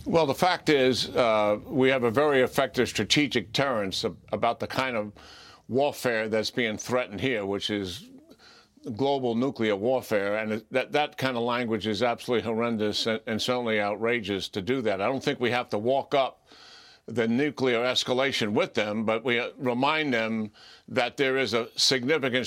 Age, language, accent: 60-79, English, American